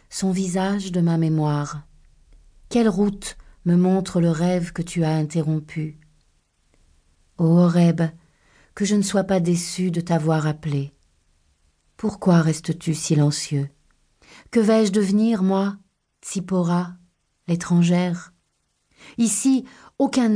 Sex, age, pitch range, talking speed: female, 40-59, 155-190 Hz, 110 wpm